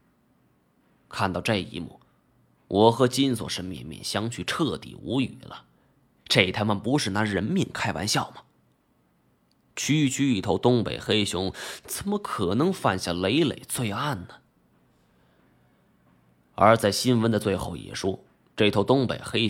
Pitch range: 95-135 Hz